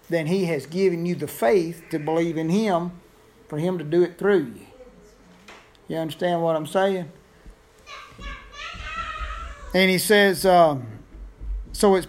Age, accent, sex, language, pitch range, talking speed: 50-69, American, male, English, 155-190 Hz, 145 wpm